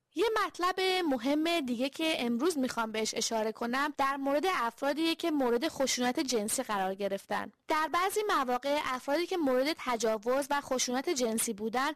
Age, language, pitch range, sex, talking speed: 20-39, English, 240-320 Hz, female, 150 wpm